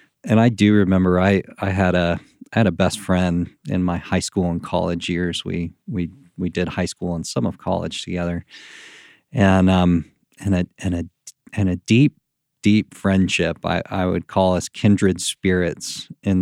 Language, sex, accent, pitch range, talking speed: English, male, American, 90-110 Hz, 185 wpm